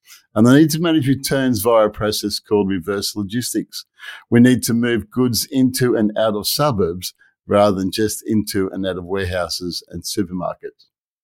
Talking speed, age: 170 wpm, 50-69